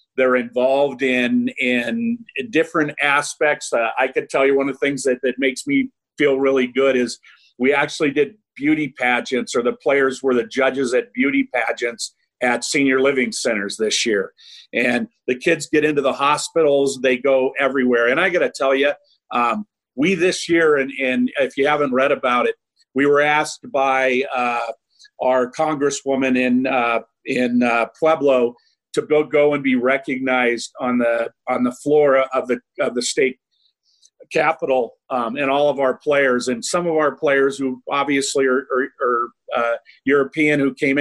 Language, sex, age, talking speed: English, male, 50-69, 175 wpm